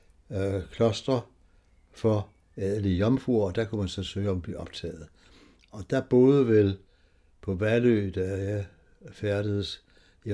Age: 60-79